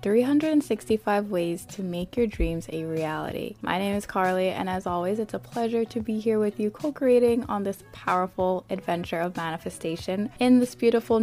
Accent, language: American, English